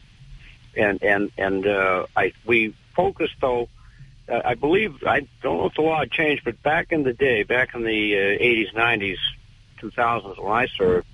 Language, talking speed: English, 185 wpm